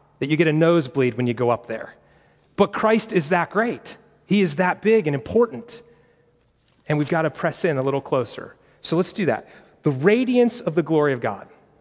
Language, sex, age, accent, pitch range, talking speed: English, male, 30-49, American, 140-190 Hz, 210 wpm